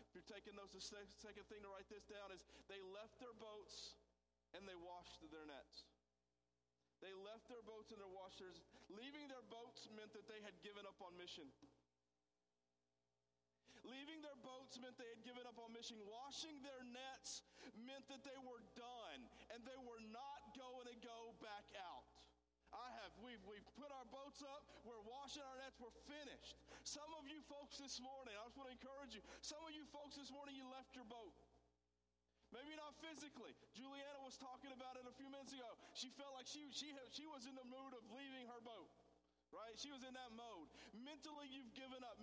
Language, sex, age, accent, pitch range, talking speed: English, male, 50-69, American, 210-280 Hz, 190 wpm